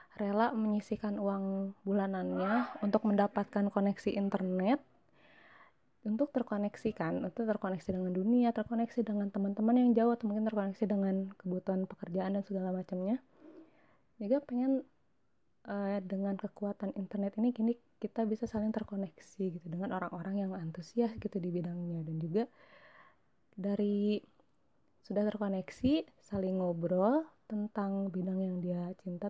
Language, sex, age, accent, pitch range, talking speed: Indonesian, female, 20-39, native, 185-220 Hz, 120 wpm